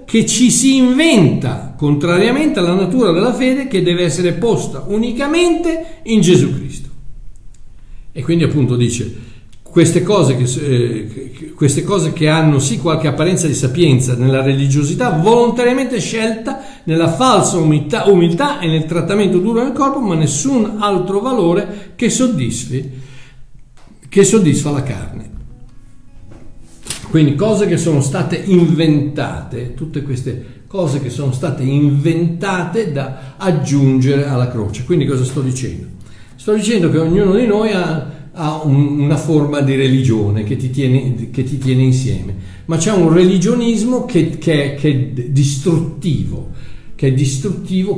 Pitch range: 130-190 Hz